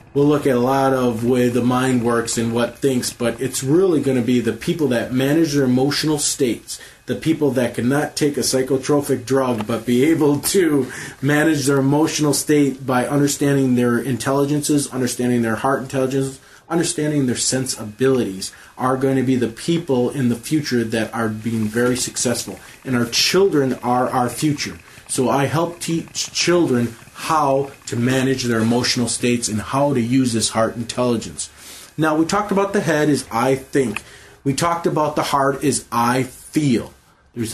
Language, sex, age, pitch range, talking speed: English, male, 30-49, 120-145 Hz, 175 wpm